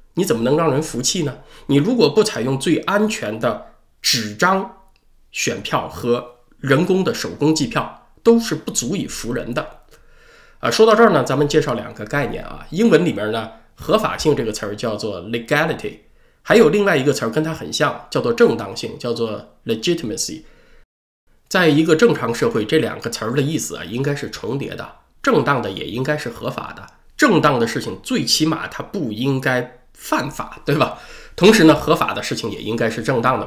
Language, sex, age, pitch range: Chinese, male, 20-39, 120-175 Hz